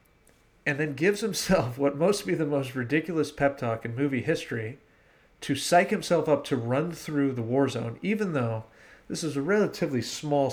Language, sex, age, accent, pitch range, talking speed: English, male, 40-59, American, 120-150 Hz, 180 wpm